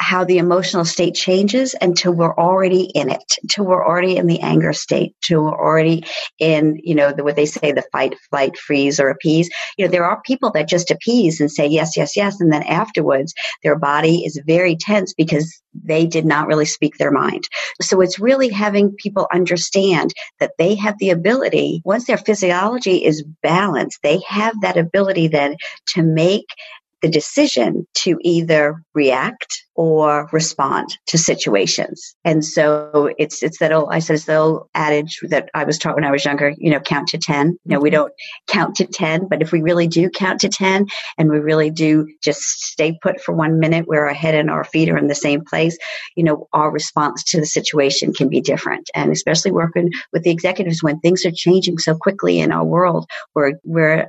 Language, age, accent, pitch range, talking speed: English, 50-69, American, 150-185 Hz, 200 wpm